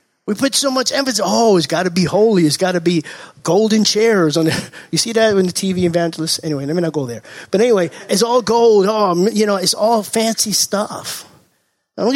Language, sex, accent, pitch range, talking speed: English, male, American, 175-225 Hz, 225 wpm